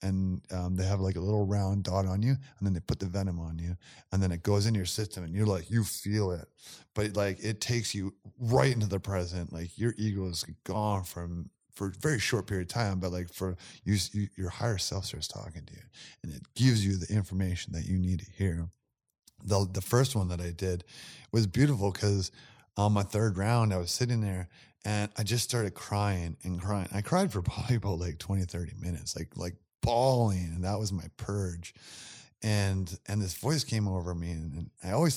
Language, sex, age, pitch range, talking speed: English, male, 30-49, 95-115 Hz, 220 wpm